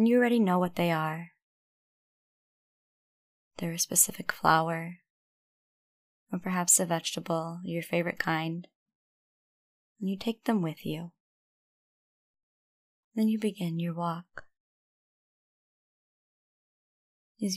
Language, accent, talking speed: English, American, 100 wpm